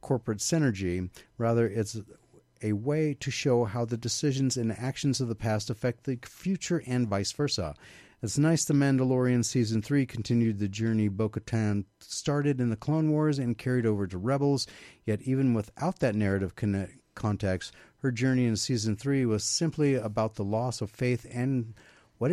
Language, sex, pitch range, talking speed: English, male, 105-130 Hz, 170 wpm